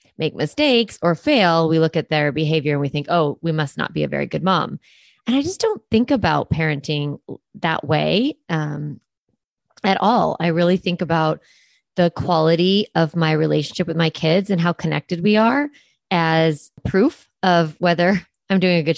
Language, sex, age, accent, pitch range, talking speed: English, female, 30-49, American, 155-195 Hz, 185 wpm